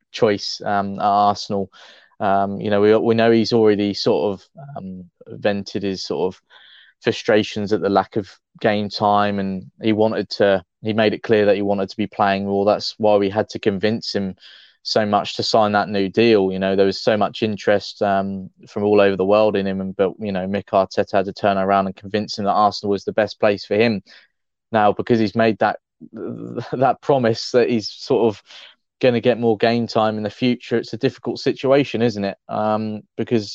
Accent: British